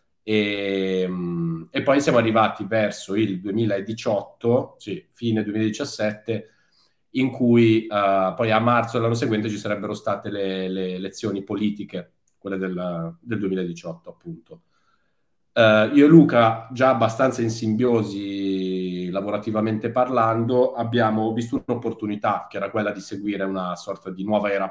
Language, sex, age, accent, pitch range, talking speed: Italian, male, 30-49, native, 100-115 Hz, 130 wpm